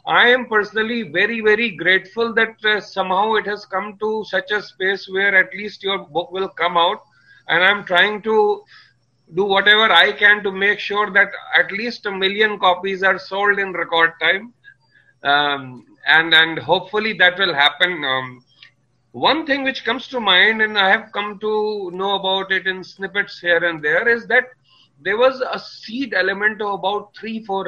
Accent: Indian